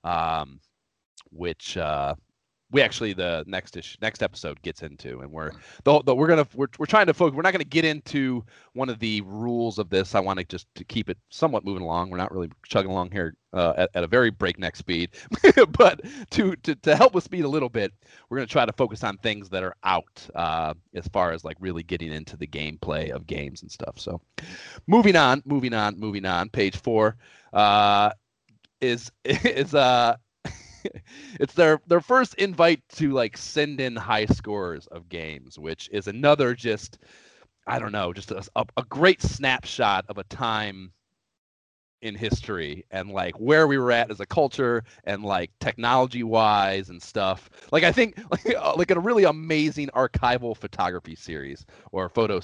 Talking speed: 185 wpm